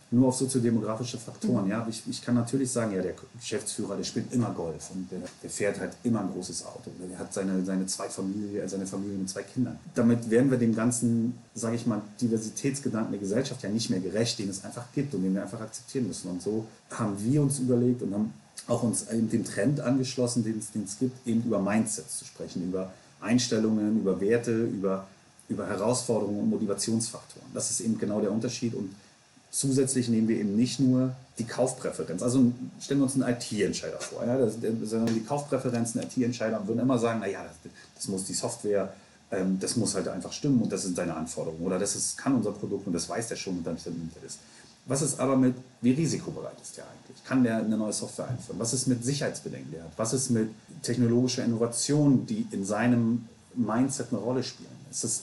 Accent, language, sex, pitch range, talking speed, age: German, German, male, 105-125 Hz, 210 wpm, 30-49